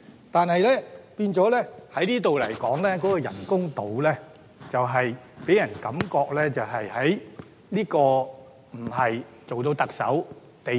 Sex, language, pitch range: male, Chinese, 130-175 Hz